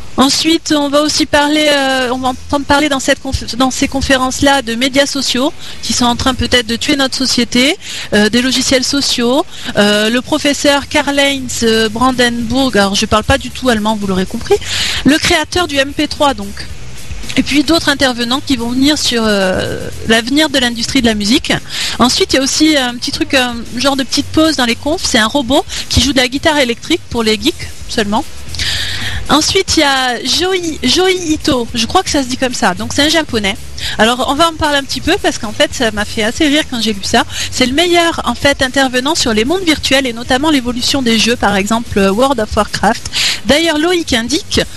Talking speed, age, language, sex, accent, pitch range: 215 wpm, 30-49, French, female, French, 235-300 Hz